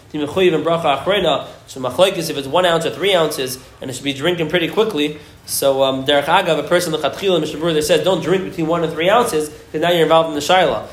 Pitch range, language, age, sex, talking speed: 155-190 Hz, English, 20-39, male, 215 wpm